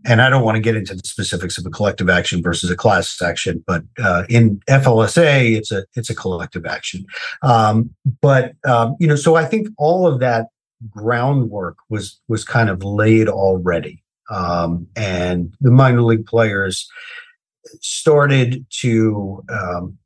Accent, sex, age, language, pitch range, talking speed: American, male, 40-59, English, 95-130 Hz, 160 wpm